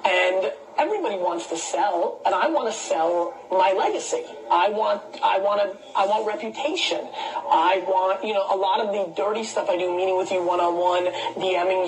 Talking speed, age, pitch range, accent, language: 180 wpm, 30-49, 185-290 Hz, American, English